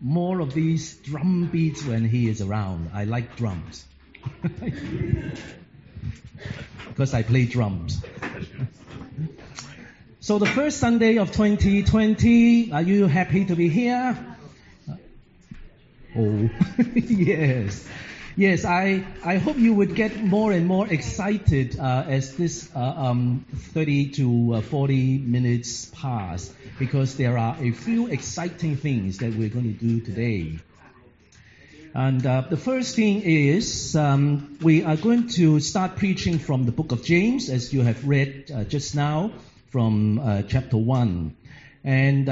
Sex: male